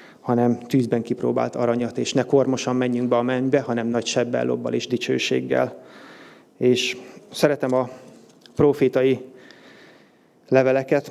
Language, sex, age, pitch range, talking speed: Hungarian, male, 30-49, 125-135 Hz, 120 wpm